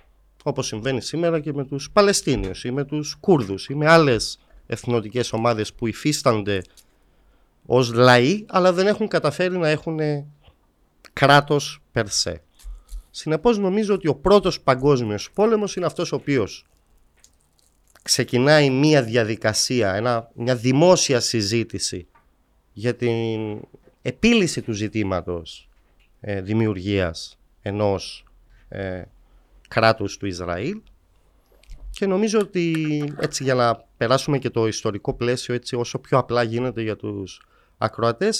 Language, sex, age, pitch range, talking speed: Greek, male, 30-49, 95-145 Hz, 115 wpm